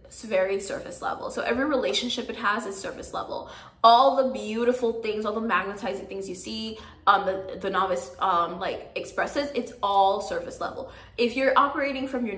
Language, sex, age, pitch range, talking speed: English, female, 20-39, 195-255 Hz, 185 wpm